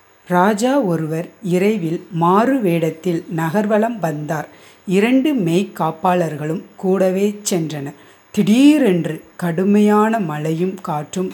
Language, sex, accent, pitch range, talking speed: Tamil, female, native, 165-215 Hz, 80 wpm